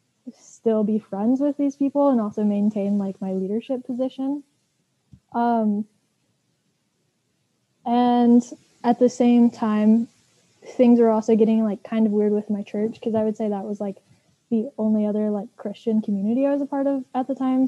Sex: female